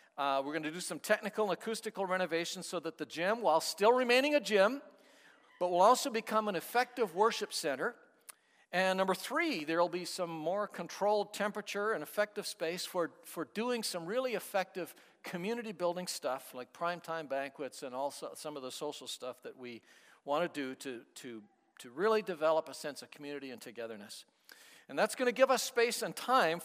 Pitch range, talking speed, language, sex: 160-220 Hz, 190 wpm, English, male